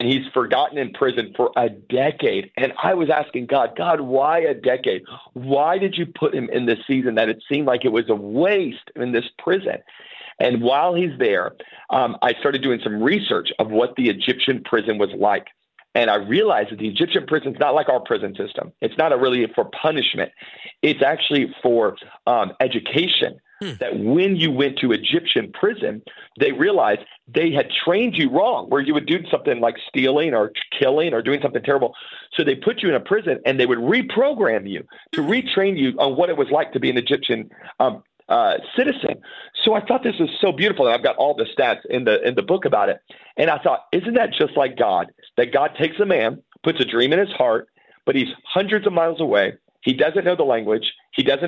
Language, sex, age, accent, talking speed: English, male, 40-59, American, 210 wpm